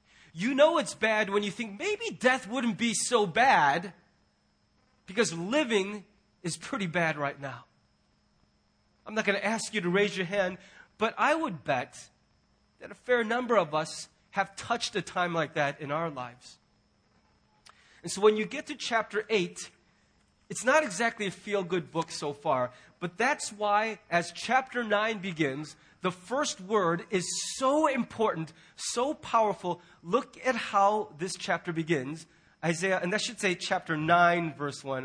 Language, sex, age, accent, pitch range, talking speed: English, male, 30-49, American, 155-225 Hz, 165 wpm